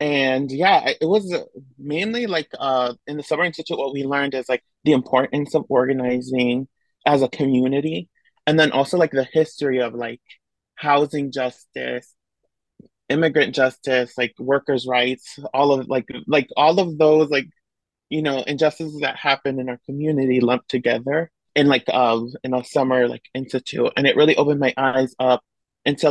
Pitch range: 125-150 Hz